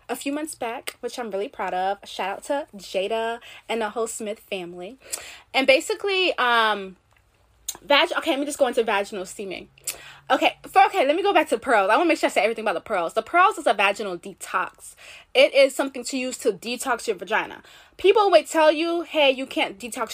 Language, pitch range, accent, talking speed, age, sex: English, 205-270 Hz, American, 215 wpm, 20-39, female